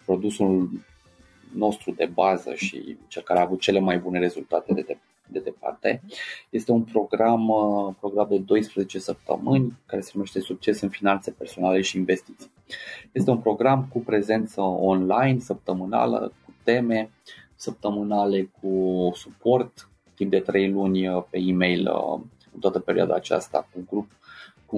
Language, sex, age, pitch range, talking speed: Romanian, male, 30-49, 95-110 Hz, 140 wpm